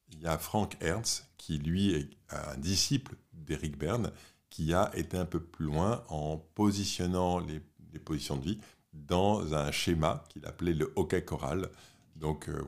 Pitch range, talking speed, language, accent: 75-100 Hz, 170 wpm, French, French